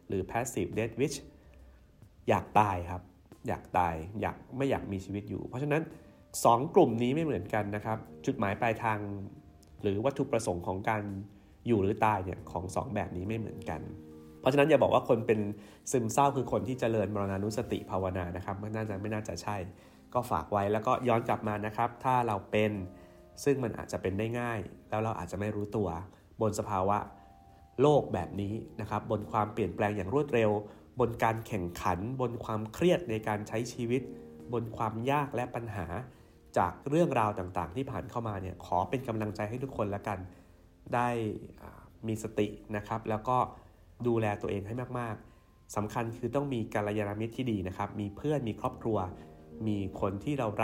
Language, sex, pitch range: Thai, male, 95-115 Hz